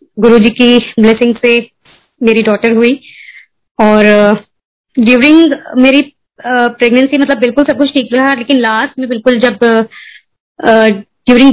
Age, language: 20-39, Hindi